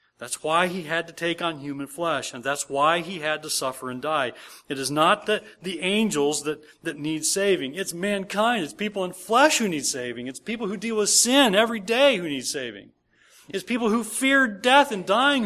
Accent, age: American, 40-59